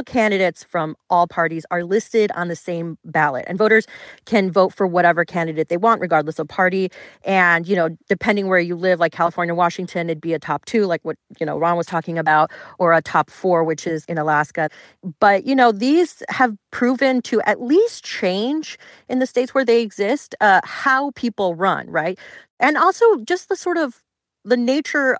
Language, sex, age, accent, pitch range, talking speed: English, female, 30-49, American, 170-230 Hz, 195 wpm